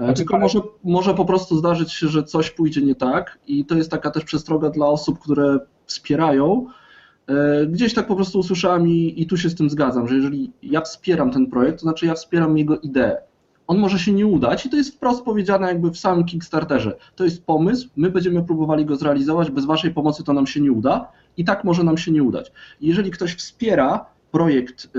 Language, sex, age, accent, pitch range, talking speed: Polish, male, 20-39, native, 145-195 Hz, 210 wpm